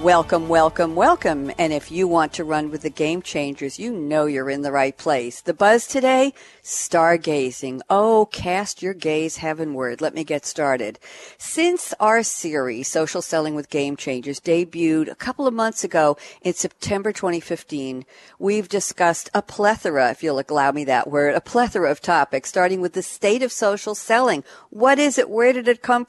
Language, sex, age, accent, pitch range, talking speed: English, female, 60-79, American, 155-210 Hz, 180 wpm